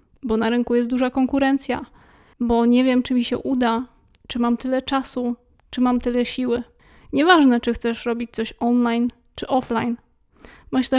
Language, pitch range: Polish, 240-265 Hz